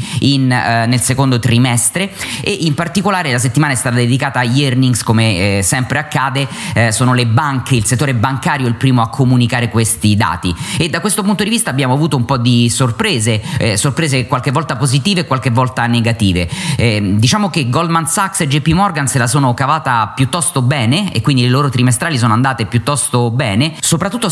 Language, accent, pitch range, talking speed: Italian, native, 120-155 Hz, 190 wpm